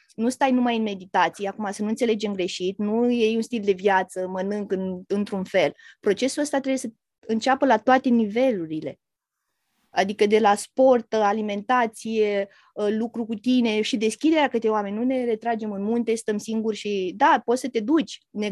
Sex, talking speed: female, 175 wpm